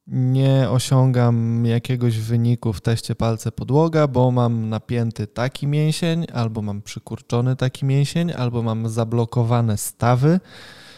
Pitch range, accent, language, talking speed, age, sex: 120-140 Hz, native, Polish, 120 wpm, 20-39, male